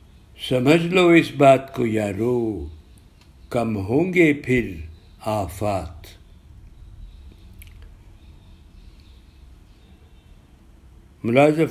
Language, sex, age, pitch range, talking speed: Urdu, male, 60-79, 85-135 Hz, 60 wpm